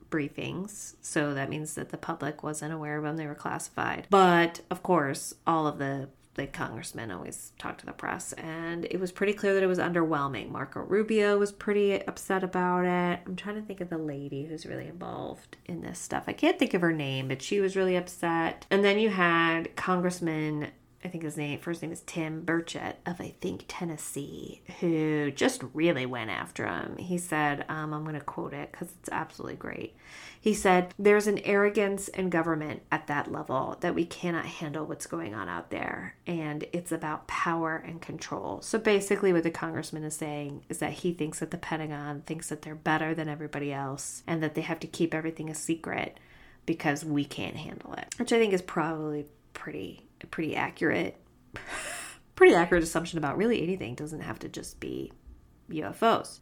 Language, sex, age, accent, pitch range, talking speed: English, female, 20-39, American, 150-185 Hz, 195 wpm